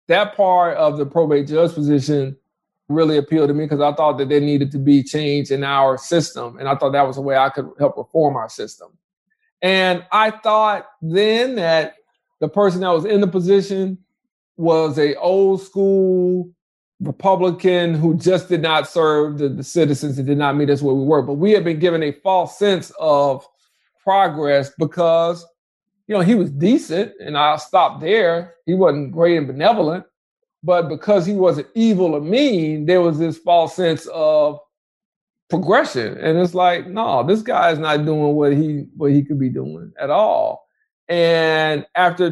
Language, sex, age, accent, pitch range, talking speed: English, male, 50-69, American, 150-185 Hz, 180 wpm